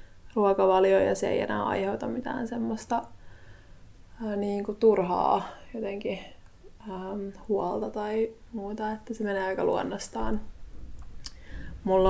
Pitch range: 180-220 Hz